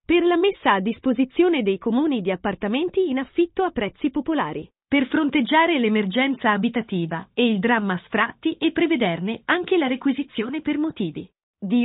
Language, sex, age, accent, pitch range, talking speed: Italian, female, 30-49, native, 220-300 Hz, 150 wpm